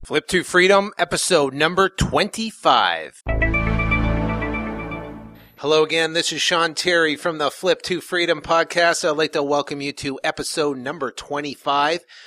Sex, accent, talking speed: male, American, 130 wpm